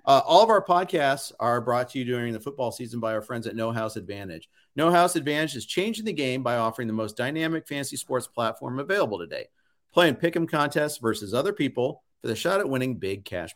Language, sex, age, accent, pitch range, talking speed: English, male, 50-69, American, 115-165 Hz, 225 wpm